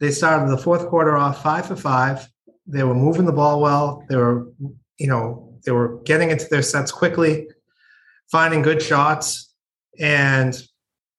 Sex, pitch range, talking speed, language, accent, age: male, 130-165 Hz, 160 wpm, English, American, 30-49